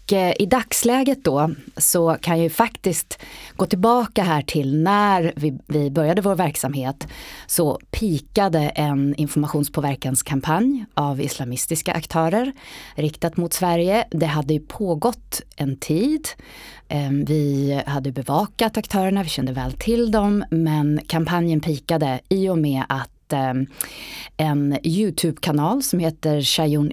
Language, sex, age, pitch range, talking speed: Swedish, female, 30-49, 140-185 Hz, 125 wpm